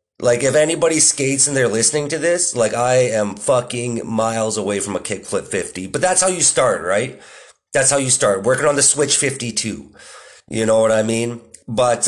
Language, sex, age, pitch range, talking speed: English, male, 30-49, 120-185 Hz, 200 wpm